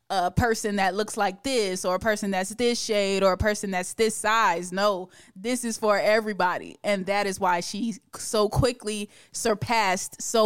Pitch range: 195-235 Hz